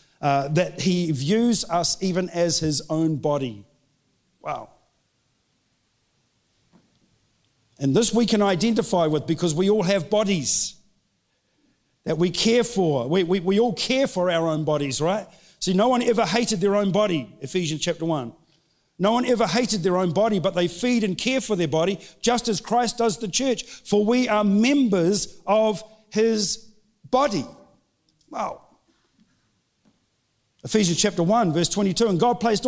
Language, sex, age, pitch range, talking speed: English, male, 50-69, 175-245 Hz, 155 wpm